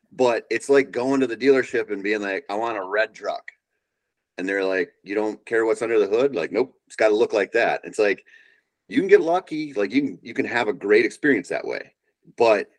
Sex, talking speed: male, 230 wpm